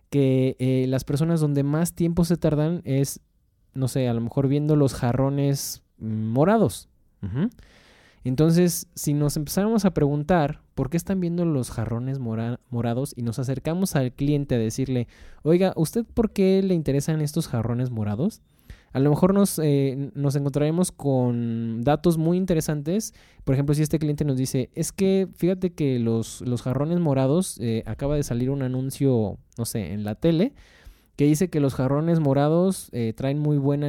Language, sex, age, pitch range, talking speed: Spanish, male, 20-39, 120-160 Hz, 170 wpm